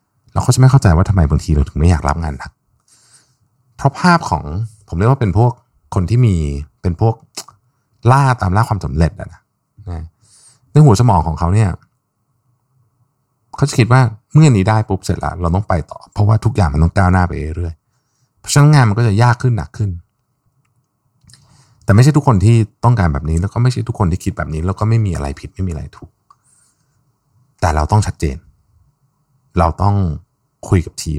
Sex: male